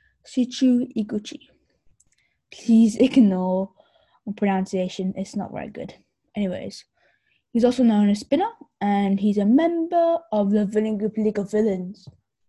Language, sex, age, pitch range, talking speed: English, female, 10-29, 200-240 Hz, 130 wpm